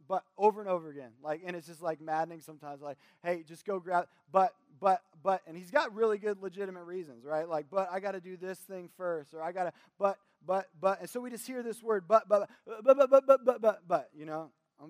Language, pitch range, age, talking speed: English, 160-225 Hz, 20-39, 260 wpm